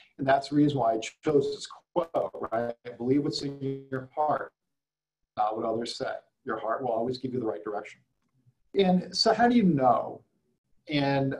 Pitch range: 120-150 Hz